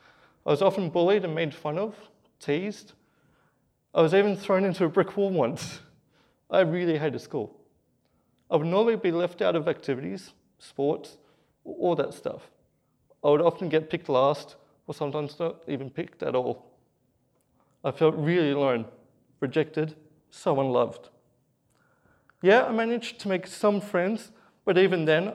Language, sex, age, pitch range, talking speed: English, male, 30-49, 140-180 Hz, 150 wpm